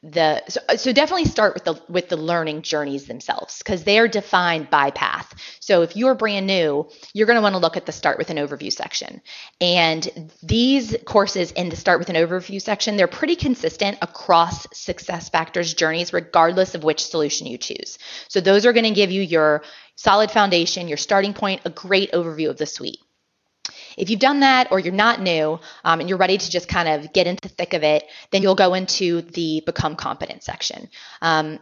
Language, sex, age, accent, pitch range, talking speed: English, female, 20-39, American, 160-195 Hz, 205 wpm